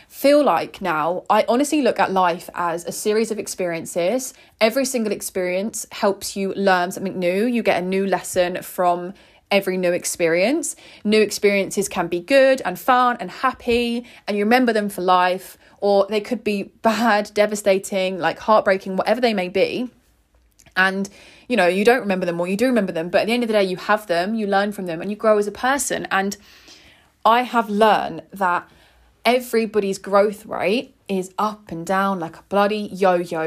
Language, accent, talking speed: English, British, 190 wpm